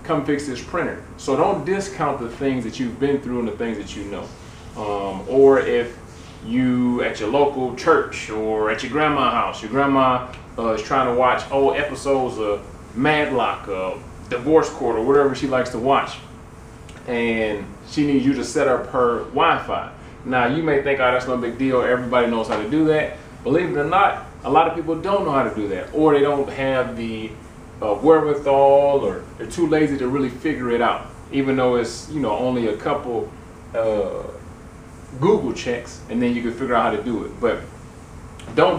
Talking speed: 195 wpm